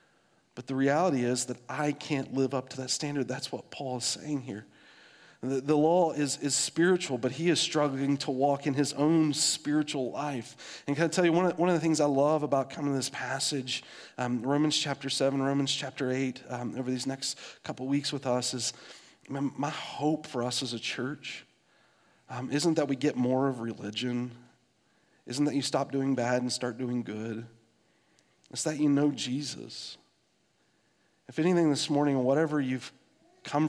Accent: American